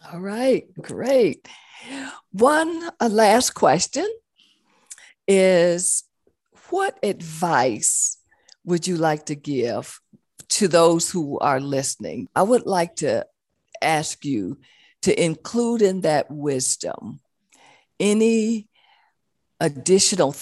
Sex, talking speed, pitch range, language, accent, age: female, 95 wpm, 135-175 Hz, English, American, 50-69